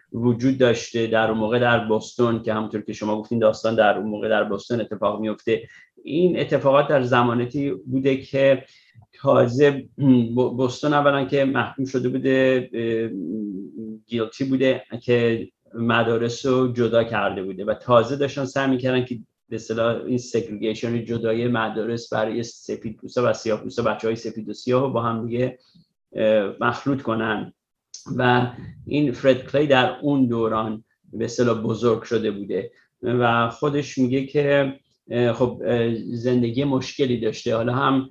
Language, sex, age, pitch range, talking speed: Persian, male, 30-49, 115-130 Hz, 140 wpm